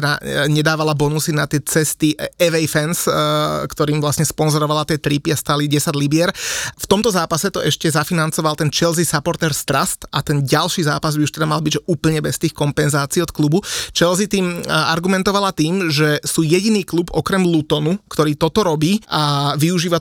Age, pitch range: 20-39, 150-180 Hz